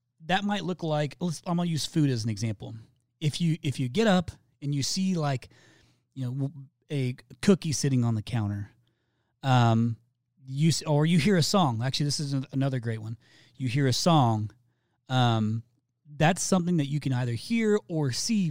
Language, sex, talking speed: English, male, 190 wpm